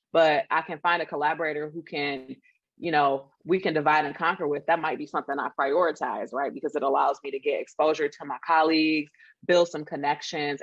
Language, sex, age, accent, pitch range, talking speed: English, female, 20-39, American, 150-185 Hz, 205 wpm